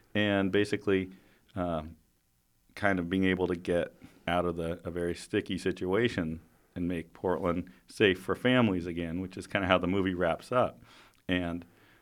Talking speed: 165 wpm